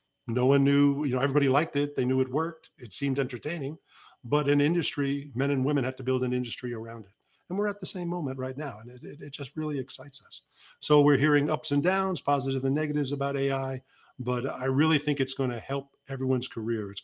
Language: English